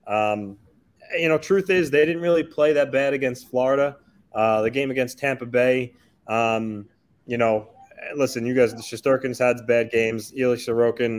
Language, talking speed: English, 170 wpm